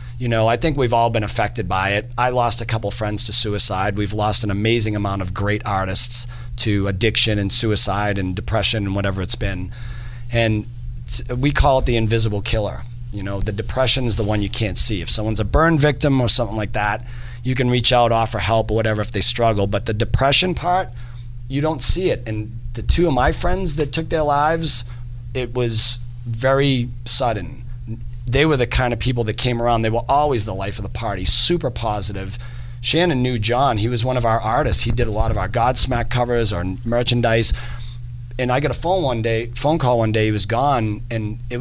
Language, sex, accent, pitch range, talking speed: English, male, American, 110-125 Hz, 215 wpm